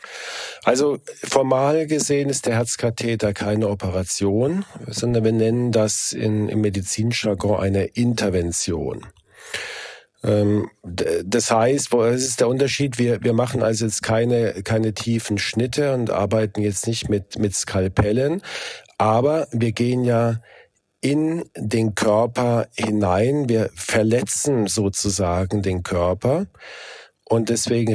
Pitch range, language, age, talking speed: 105-120 Hz, German, 40-59, 110 wpm